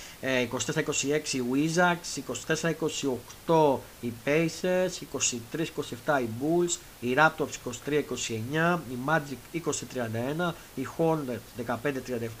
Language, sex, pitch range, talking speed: Greek, male, 125-160 Hz, 75 wpm